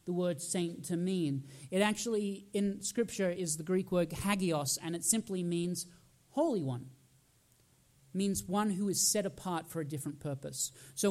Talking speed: 170 wpm